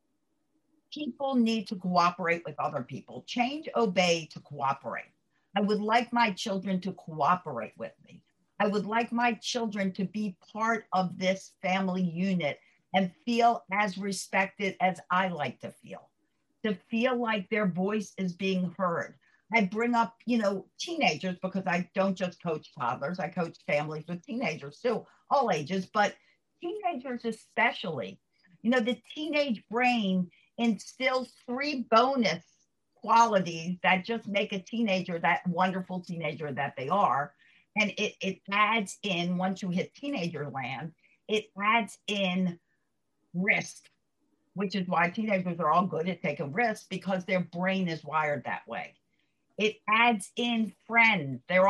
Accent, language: American, English